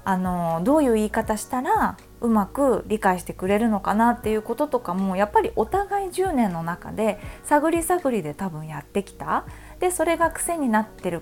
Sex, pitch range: female, 180-270 Hz